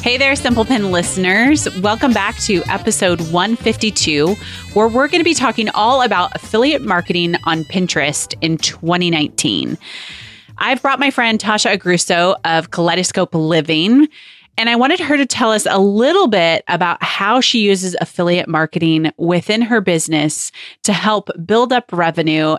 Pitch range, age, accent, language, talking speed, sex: 165-225 Hz, 30-49, American, English, 150 wpm, female